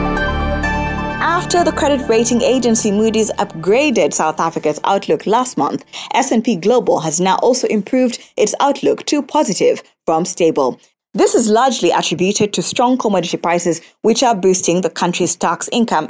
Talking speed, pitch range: 145 wpm, 165-220 Hz